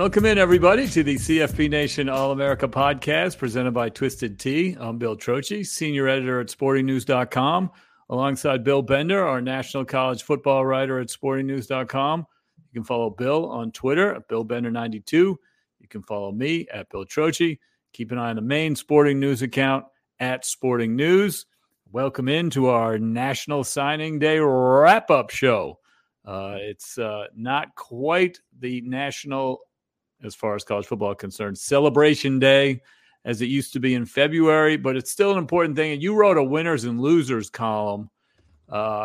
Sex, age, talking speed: male, 50-69, 160 wpm